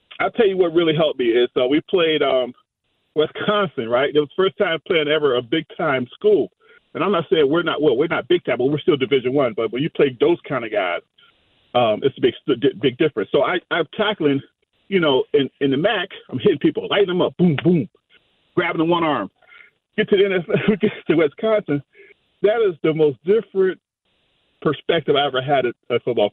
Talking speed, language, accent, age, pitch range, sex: 220 wpm, English, American, 40-59, 180-285 Hz, male